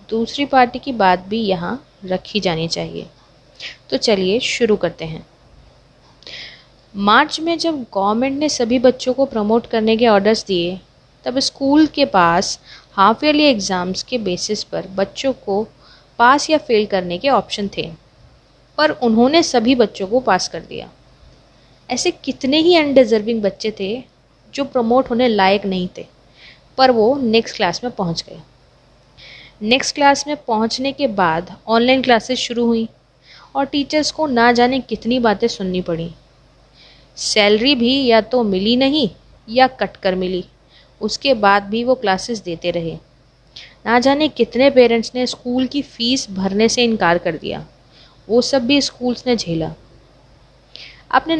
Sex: female